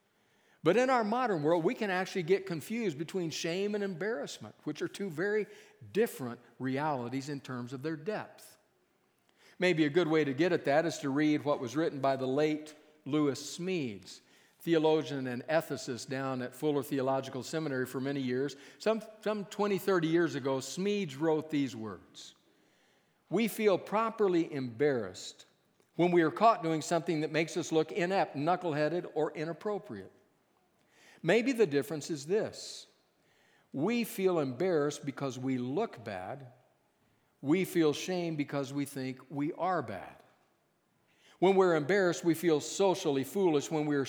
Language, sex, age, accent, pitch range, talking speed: English, male, 50-69, American, 135-180 Hz, 155 wpm